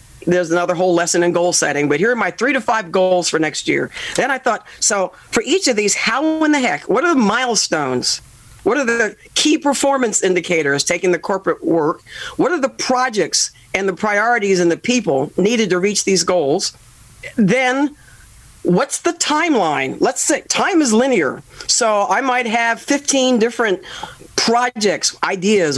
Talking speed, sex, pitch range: 175 wpm, female, 180-245 Hz